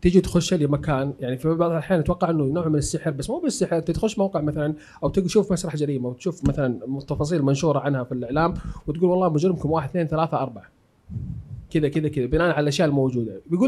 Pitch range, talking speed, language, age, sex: 135-175 Hz, 195 wpm, Arabic, 30-49, male